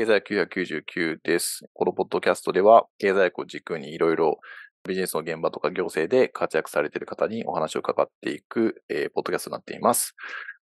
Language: Japanese